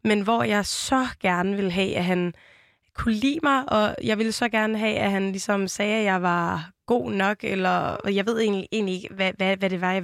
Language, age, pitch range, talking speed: Danish, 20-39, 190-225 Hz, 235 wpm